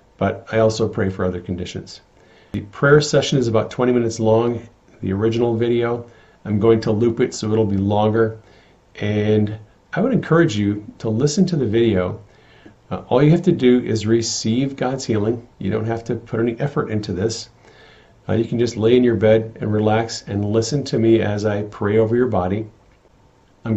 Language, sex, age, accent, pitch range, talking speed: English, male, 40-59, American, 105-120 Hz, 195 wpm